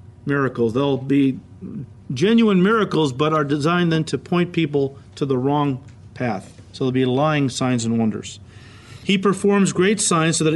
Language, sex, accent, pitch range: English, male, American, 130-195 Hz